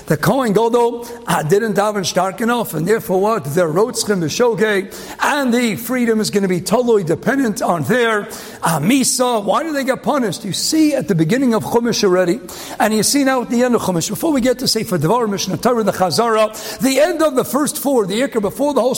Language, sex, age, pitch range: English, male, 50-69, 210-285 Hz